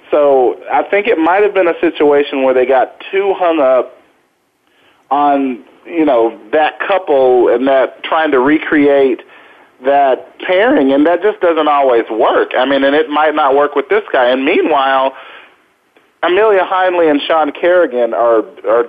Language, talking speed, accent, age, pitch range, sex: English, 165 wpm, American, 40-59, 125-180 Hz, male